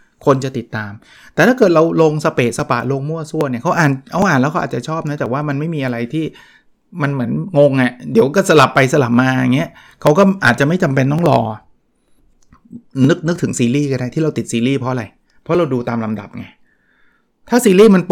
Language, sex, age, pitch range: Thai, male, 30-49, 115-150 Hz